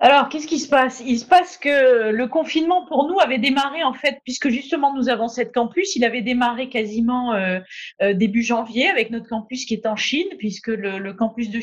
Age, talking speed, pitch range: 30-49, 215 wpm, 215-250 Hz